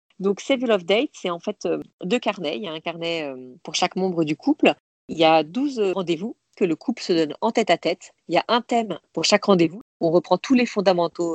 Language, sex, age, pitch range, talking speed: French, female, 40-59, 165-210 Hz, 265 wpm